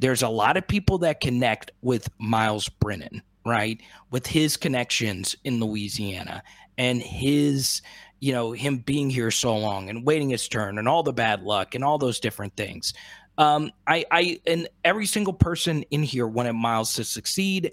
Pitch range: 115-155 Hz